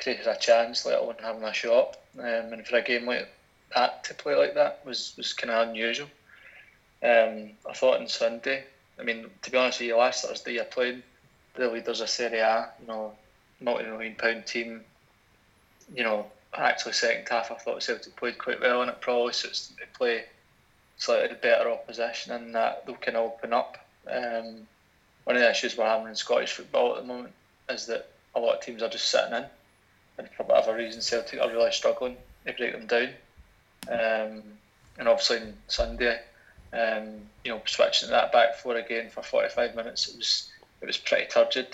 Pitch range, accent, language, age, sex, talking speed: 110-120 Hz, British, English, 20-39, male, 195 wpm